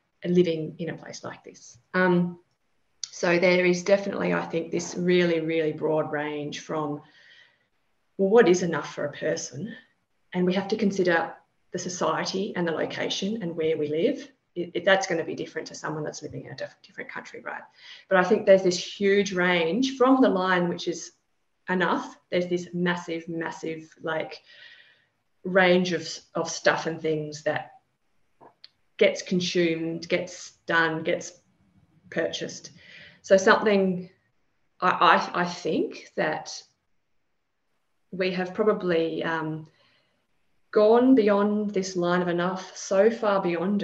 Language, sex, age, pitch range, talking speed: English, female, 30-49, 160-190 Hz, 150 wpm